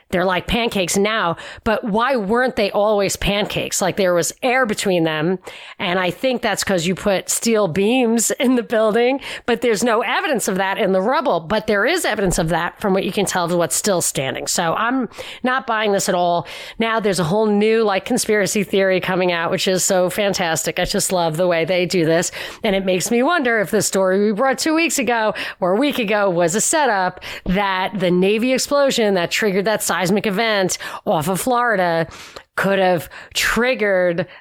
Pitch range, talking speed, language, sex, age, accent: 185-240 Hz, 200 wpm, English, female, 40-59, American